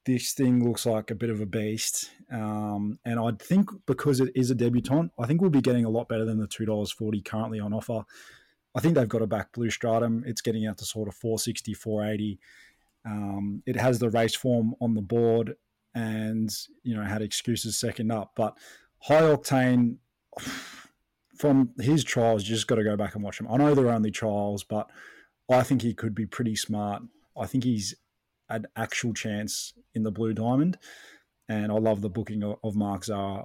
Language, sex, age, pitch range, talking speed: English, male, 20-39, 105-120 Hz, 195 wpm